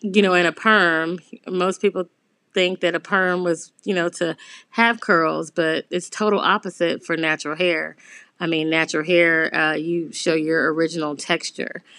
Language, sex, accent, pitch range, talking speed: English, female, American, 170-200 Hz, 170 wpm